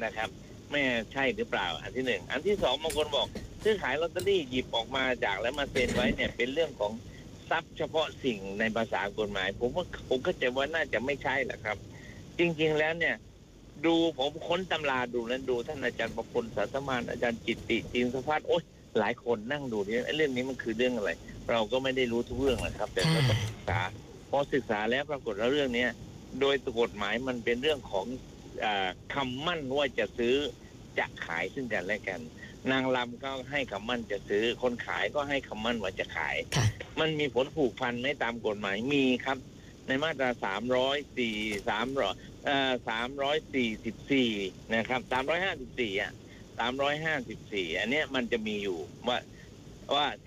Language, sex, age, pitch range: Thai, male, 60-79, 115-140 Hz